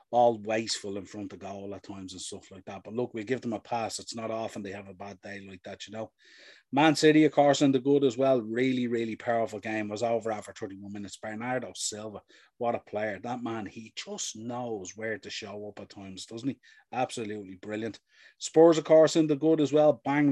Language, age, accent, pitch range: English, 30-49, Irish, 105-130 Hz